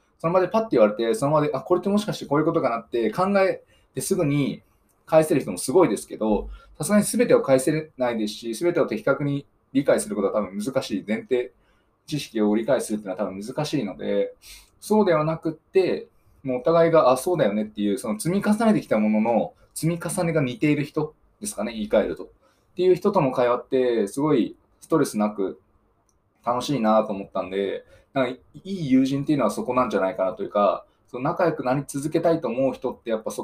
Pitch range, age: 110-165 Hz, 20-39